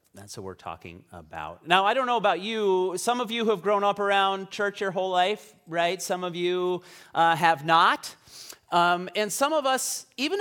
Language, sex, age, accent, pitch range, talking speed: English, male, 30-49, American, 135-190 Hz, 200 wpm